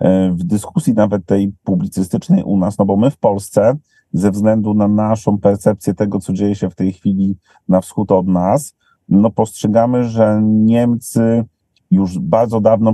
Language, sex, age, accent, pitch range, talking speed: Polish, male, 40-59, native, 100-110 Hz, 160 wpm